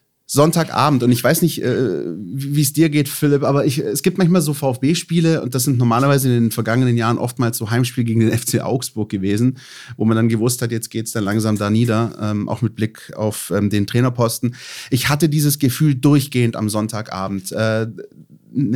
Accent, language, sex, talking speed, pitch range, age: German, German, male, 200 wpm, 110-145 Hz, 30-49